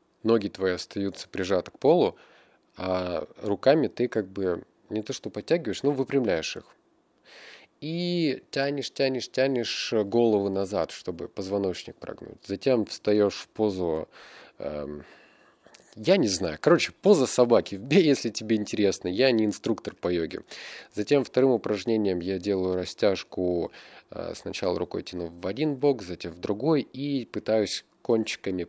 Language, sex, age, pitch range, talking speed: Russian, male, 20-39, 95-125 Hz, 135 wpm